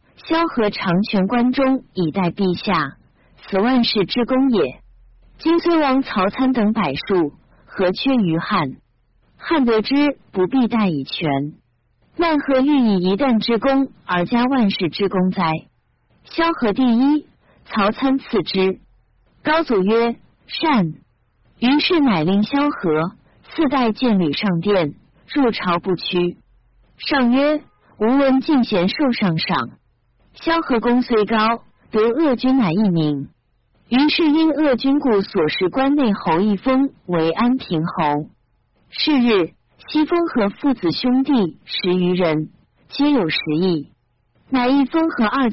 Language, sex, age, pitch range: Chinese, female, 50-69, 180-265 Hz